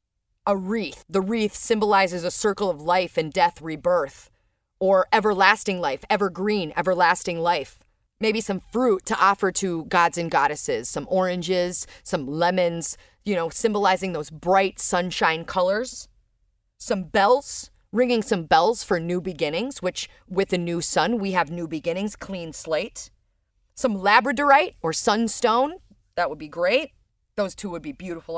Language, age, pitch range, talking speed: English, 30-49, 175-240 Hz, 150 wpm